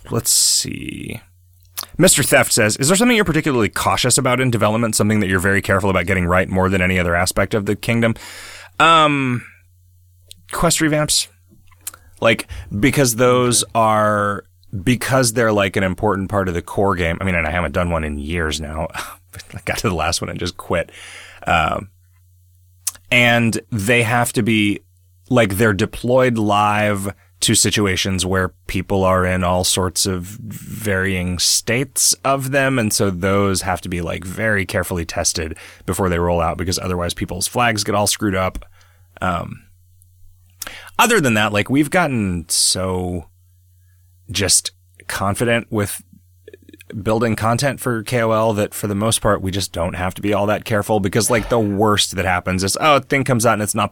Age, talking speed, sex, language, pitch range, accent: 30-49, 170 wpm, male, English, 90-115 Hz, American